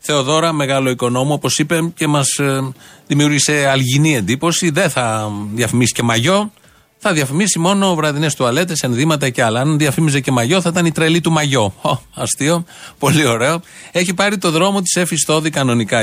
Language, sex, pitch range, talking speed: Greek, male, 120-165 Hz, 170 wpm